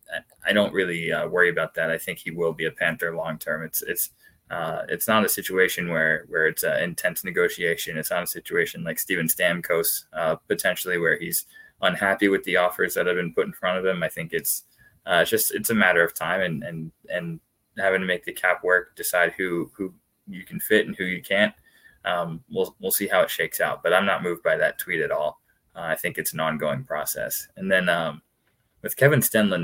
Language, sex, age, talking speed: English, male, 20-39, 225 wpm